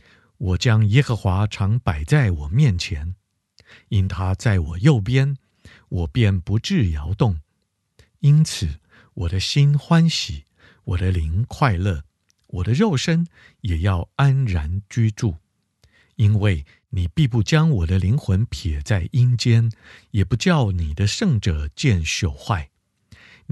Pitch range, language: 90-120 Hz, Chinese